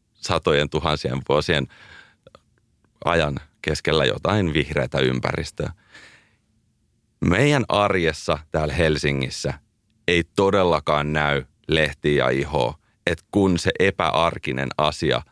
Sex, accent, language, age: male, native, Finnish, 30-49